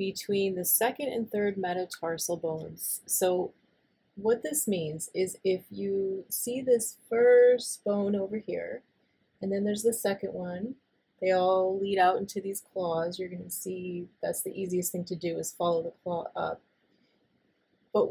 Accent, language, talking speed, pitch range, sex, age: American, English, 160 wpm, 175-215 Hz, female, 30-49